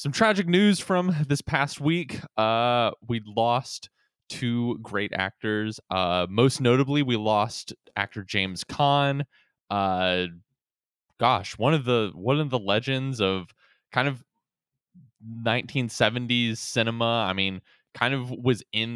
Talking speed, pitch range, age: 130 wpm, 90-120 Hz, 20-39